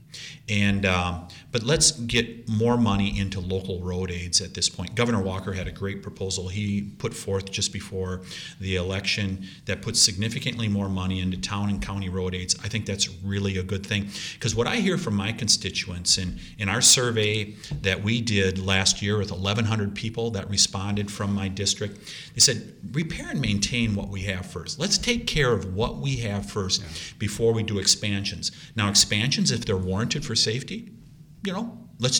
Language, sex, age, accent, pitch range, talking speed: English, male, 40-59, American, 95-120 Hz, 190 wpm